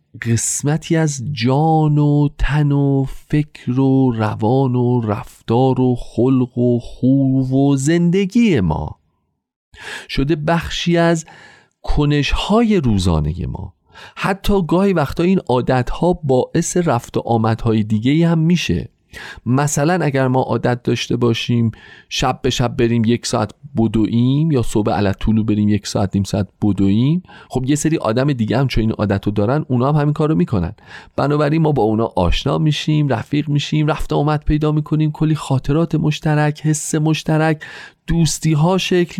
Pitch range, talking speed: 120-170 Hz, 145 wpm